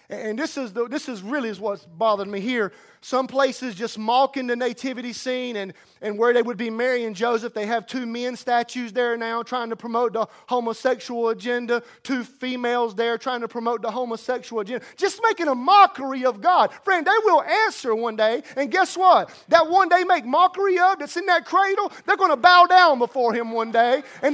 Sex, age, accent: male, 30-49, American